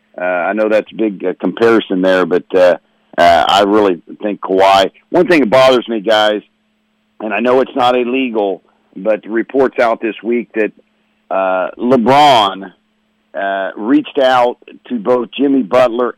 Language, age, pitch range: English, 50-69, 105-130 Hz